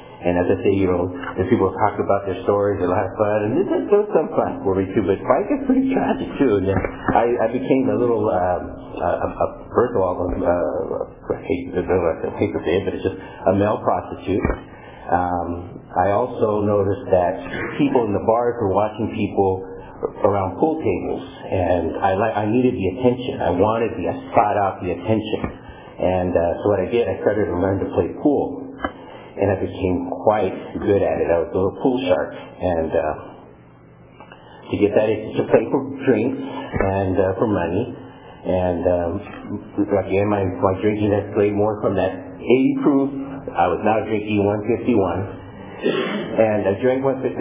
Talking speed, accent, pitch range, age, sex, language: 180 wpm, American, 95-110 Hz, 50-69, male, English